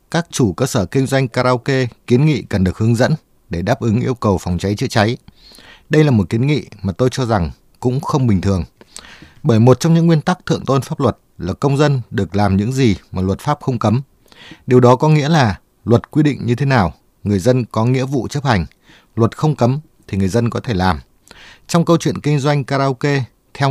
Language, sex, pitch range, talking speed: Vietnamese, male, 105-140 Hz, 230 wpm